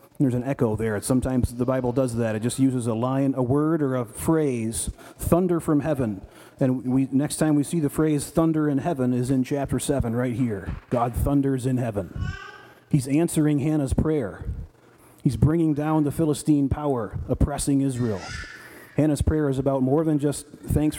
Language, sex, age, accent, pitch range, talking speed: English, male, 40-59, American, 120-150 Hz, 175 wpm